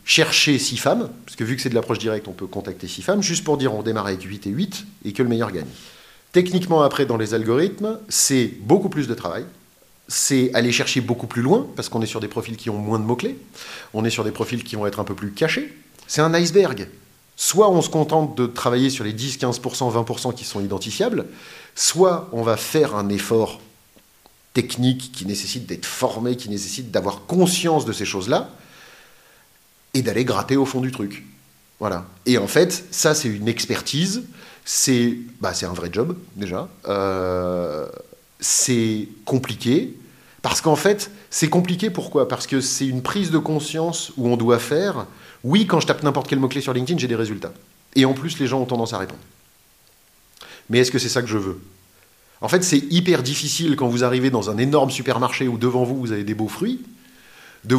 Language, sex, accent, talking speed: French, male, French, 205 wpm